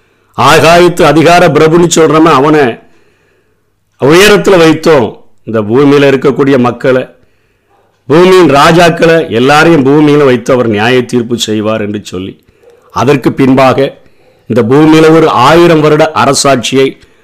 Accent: native